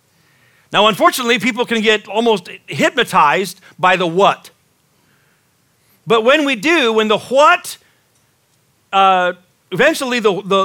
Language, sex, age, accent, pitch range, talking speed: English, male, 50-69, American, 180-245 Hz, 115 wpm